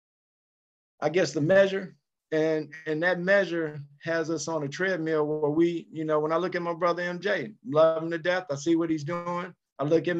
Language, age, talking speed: English, 50-69, 210 wpm